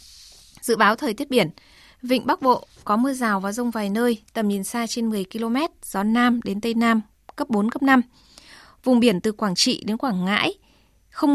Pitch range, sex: 210-250 Hz, female